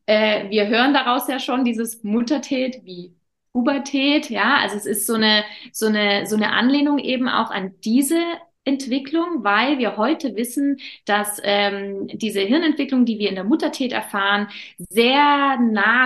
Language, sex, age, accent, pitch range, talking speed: German, female, 20-39, German, 205-265 Hz, 155 wpm